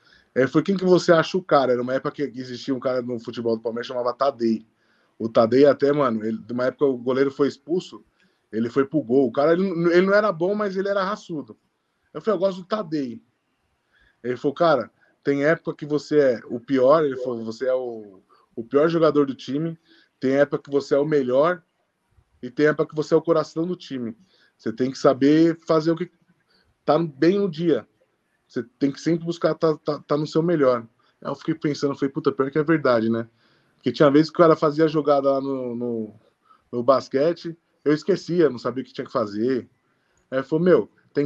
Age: 20-39